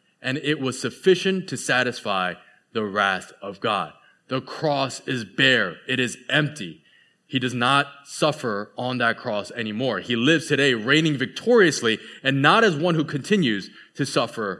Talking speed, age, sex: 155 wpm, 20-39, male